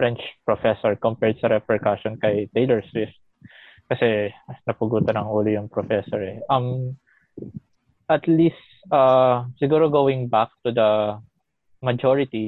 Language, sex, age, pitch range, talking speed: Filipino, male, 20-39, 115-140 Hz, 120 wpm